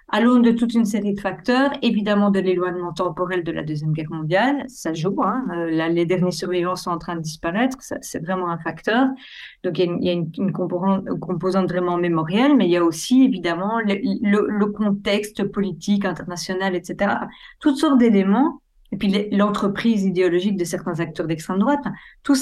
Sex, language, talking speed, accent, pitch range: female, French, 195 wpm, French, 185-240 Hz